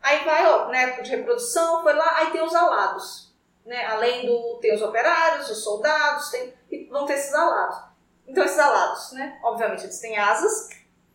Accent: Brazilian